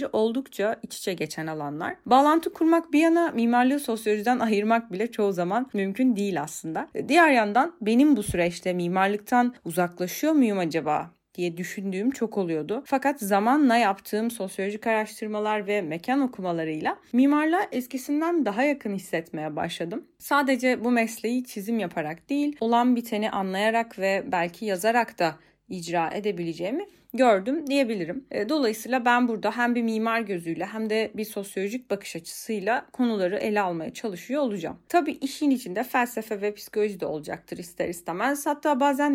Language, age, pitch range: Turkish, 30-49, 195-275 Hz